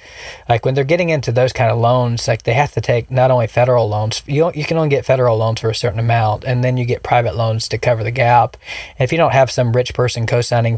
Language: English